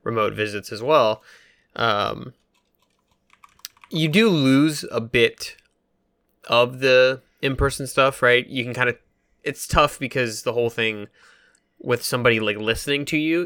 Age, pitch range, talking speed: 20-39, 110-145 Hz, 140 wpm